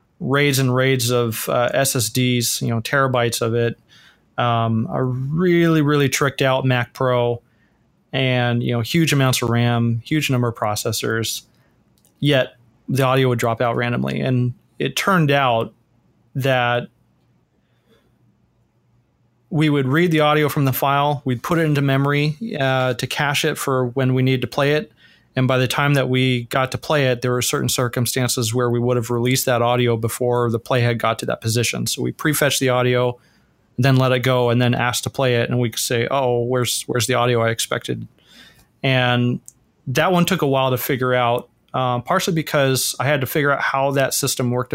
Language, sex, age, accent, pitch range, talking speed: English, male, 30-49, American, 120-140 Hz, 190 wpm